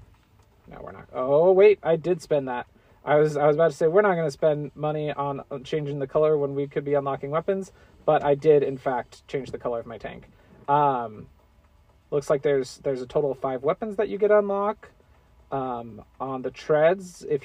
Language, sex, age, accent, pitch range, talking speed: English, male, 30-49, American, 130-190 Hz, 215 wpm